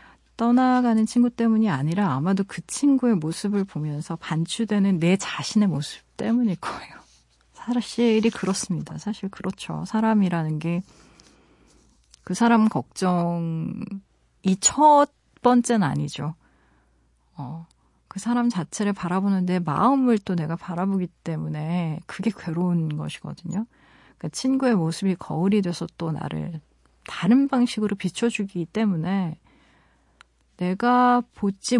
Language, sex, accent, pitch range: Korean, female, native, 165-220 Hz